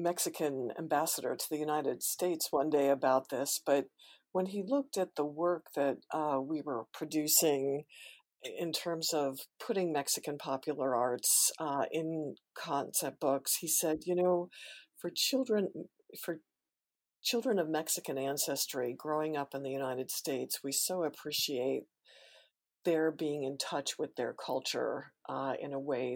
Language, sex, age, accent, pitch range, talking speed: English, female, 50-69, American, 140-170 Hz, 145 wpm